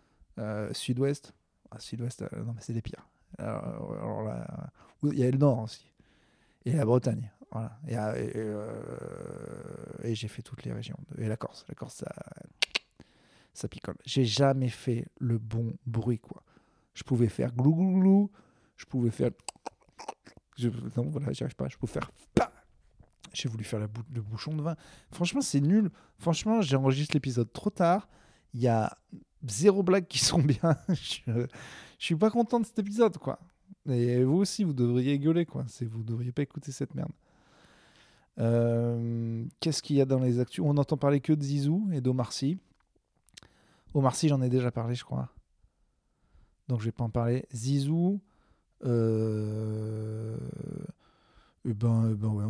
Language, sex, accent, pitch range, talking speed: French, male, French, 115-155 Hz, 170 wpm